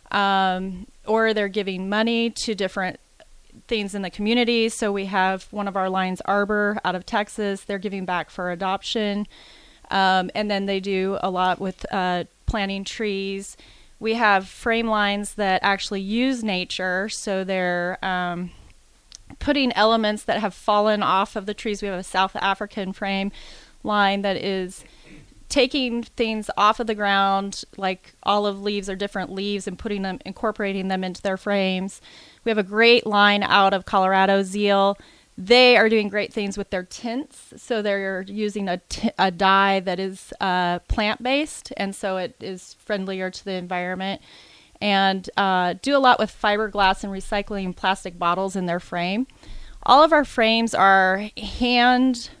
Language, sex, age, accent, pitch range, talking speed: English, female, 30-49, American, 190-215 Hz, 165 wpm